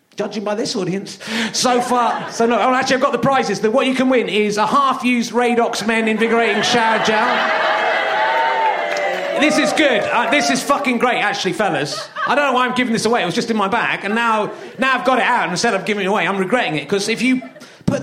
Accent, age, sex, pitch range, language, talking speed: British, 30-49, male, 195-245 Hz, English, 235 wpm